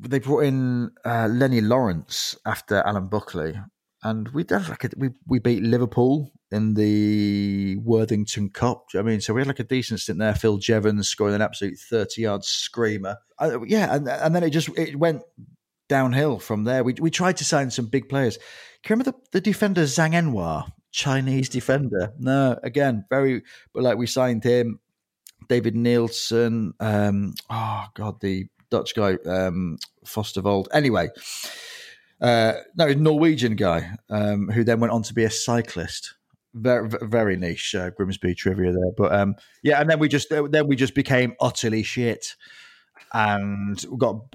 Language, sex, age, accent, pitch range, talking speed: English, male, 30-49, British, 105-130 Hz, 170 wpm